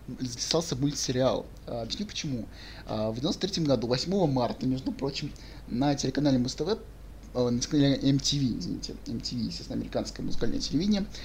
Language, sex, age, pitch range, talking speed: Russian, male, 20-39, 125-145 Hz, 125 wpm